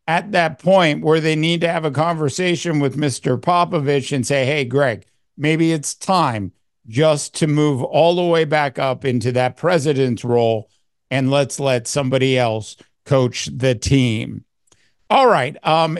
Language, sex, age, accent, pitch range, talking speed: English, male, 50-69, American, 135-165 Hz, 160 wpm